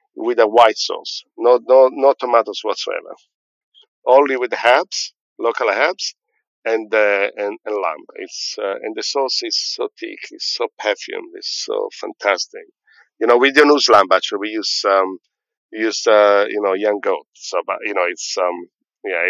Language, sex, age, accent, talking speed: English, male, 50-69, Italian, 180 wpm